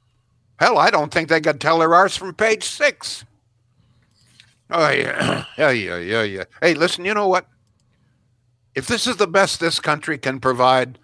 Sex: male